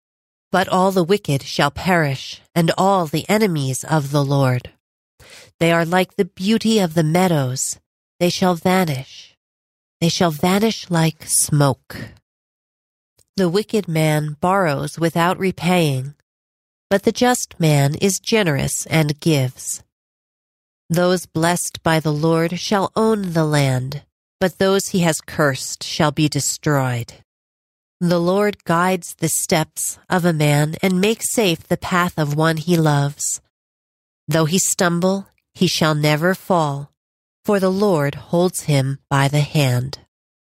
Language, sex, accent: English, female, American